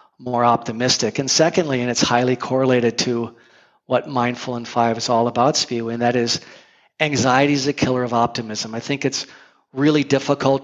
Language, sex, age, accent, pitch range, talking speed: English, male, 50-69, American, 120-135 Hz, 175 wpm